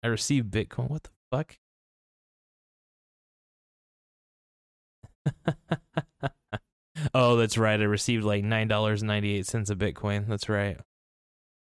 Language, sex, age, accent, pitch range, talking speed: English, male, 20-39, American, 100-120 Hz, 110 wpm